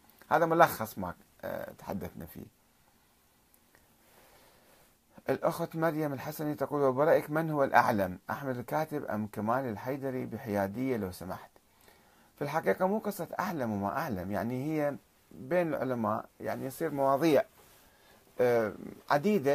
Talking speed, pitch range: 110 wpm, 125-175 Hz